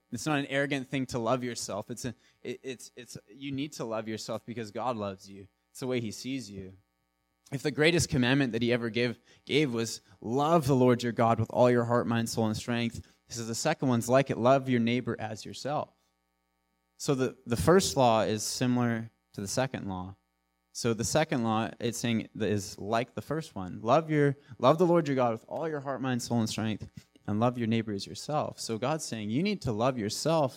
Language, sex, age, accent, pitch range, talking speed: English, male, 20-39, American, 105-135 Hz, 225 wpm